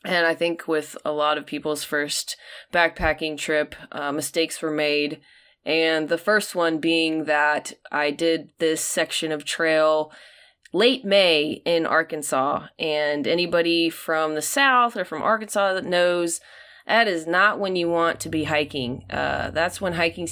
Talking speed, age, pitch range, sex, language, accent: 160 wpm, 20-39, 155-195 Hz, female, English, American